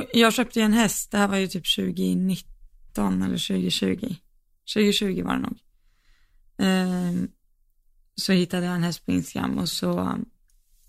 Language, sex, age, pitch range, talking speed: Swedish, female, 20-39, 165-195 Hz, 150 wpm